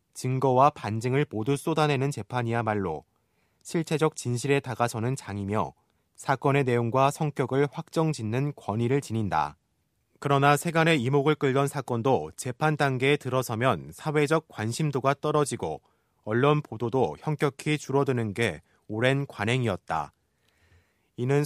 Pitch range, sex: 115-145 Hz, male